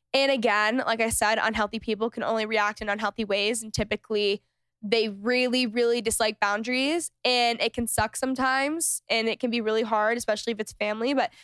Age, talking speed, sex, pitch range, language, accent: 10-29, 190 wpm, female, 215-255 Hz, English, American